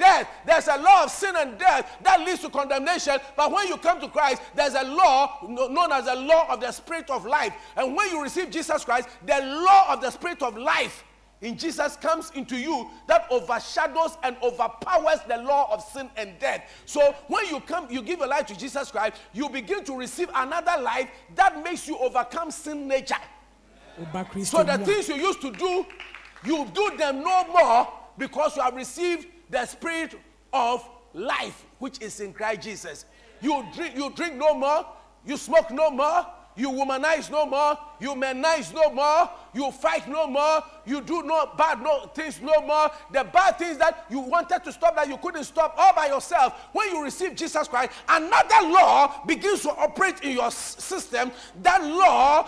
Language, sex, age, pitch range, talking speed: English, male, 50-69, 265-340 Hz, 190 wpm